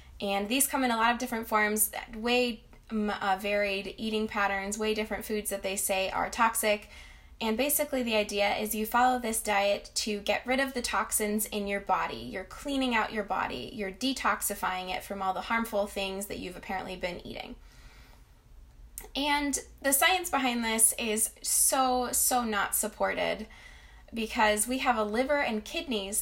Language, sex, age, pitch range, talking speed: English, female, 10-29, 195-230 Hz, 170 wpm